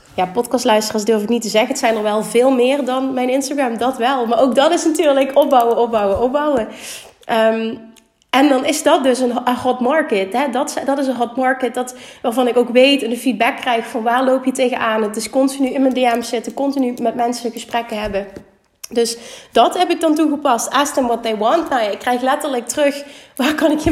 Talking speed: 220 wpm